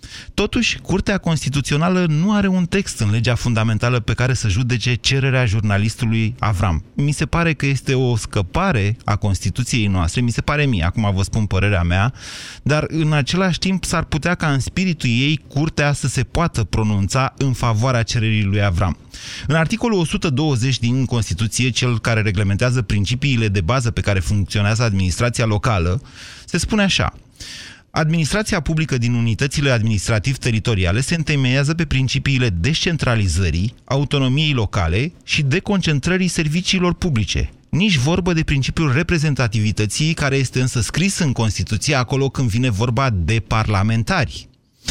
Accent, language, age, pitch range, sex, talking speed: native, Romanian, 30-49, 110-155 Hz, male, 145 wpm